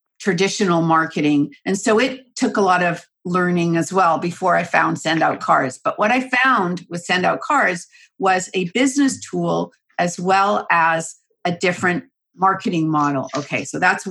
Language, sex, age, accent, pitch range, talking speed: English, female, 50-69, American, 175-215 Hz, 170 wpm